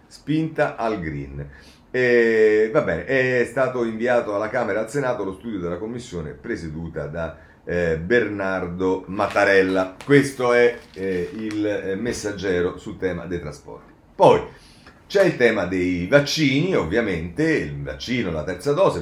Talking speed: 135 wpm